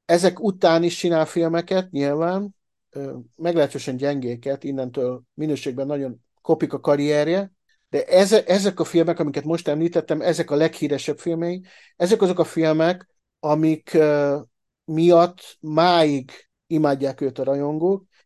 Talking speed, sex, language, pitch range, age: 130 wpm, male, Hungarian, 140-170 Hz, 50-69